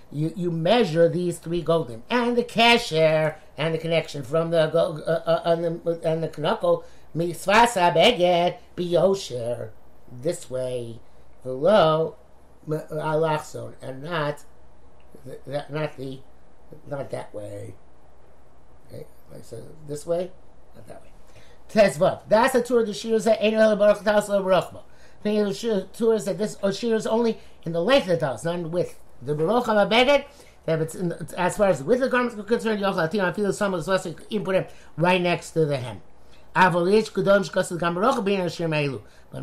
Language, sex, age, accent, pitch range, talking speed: English, male, 50-69, American, 155-210 Hz, 160 wpm